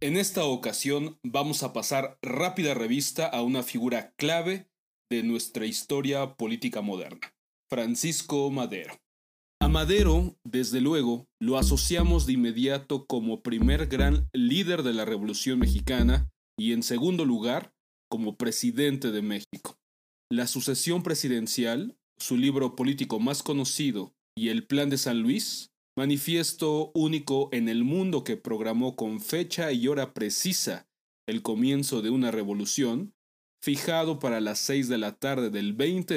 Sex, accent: male, Mexican